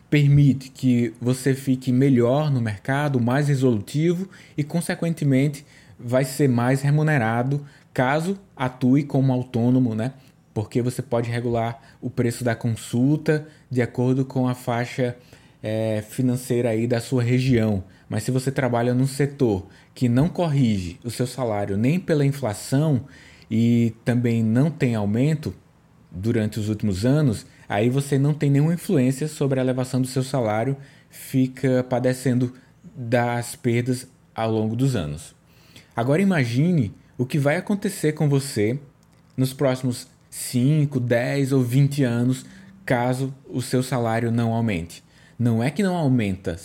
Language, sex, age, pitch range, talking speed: Portuguese, male, 20-39, 120-145 Hz, 140 wpm